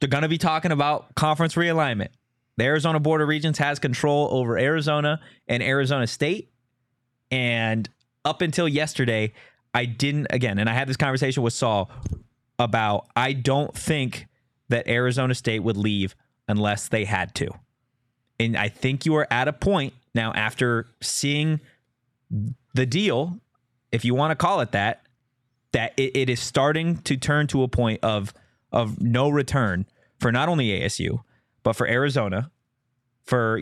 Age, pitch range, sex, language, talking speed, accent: 20-39, 115-140 Hz, male, English, 160 wpm, American